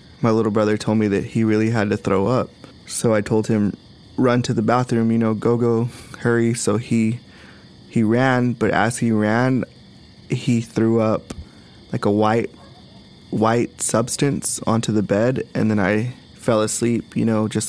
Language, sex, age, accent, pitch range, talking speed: English, male, 20-39, American, 105-120 Hz, 175 wpm